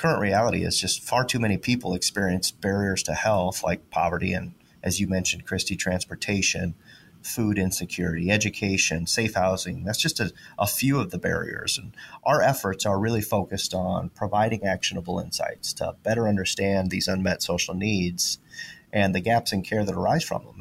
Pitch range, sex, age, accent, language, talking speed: 95-115 Hz, male, 30-49, American, English, 170 wpm